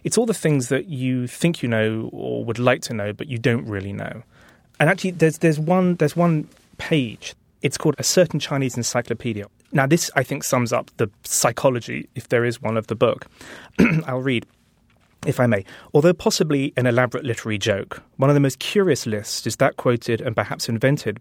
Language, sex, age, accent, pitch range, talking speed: English, male, 30-49, British, 115-150 Hz, 200 wpm